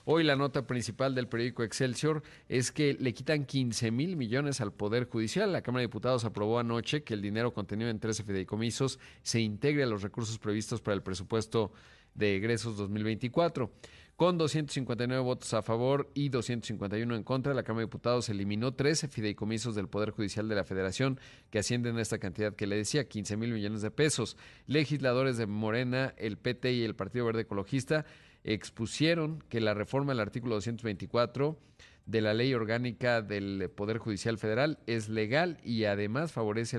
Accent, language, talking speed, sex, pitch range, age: Mexican, Spanish, 175 wpm, male, 105-130 Hz, 40-59